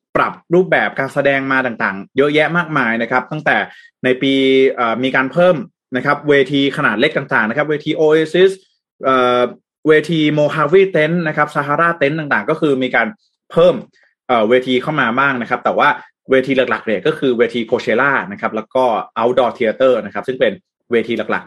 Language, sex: Thai, male